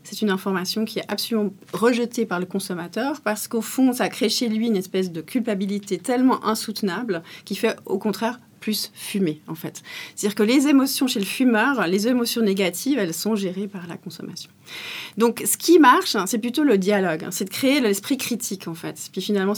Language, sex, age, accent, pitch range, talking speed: French, female, 30-49, French, 185-225 Hz, 200 wpm